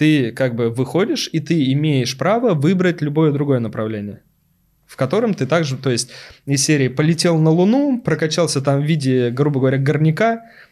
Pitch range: 120-160 Hz